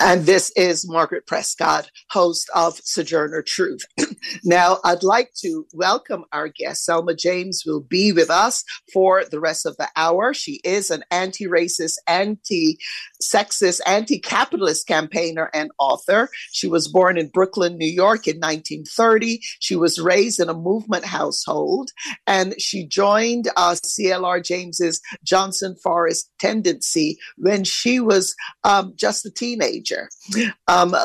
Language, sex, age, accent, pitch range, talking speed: English, female, 50-69, American, 170-210 Hz, 135 wpm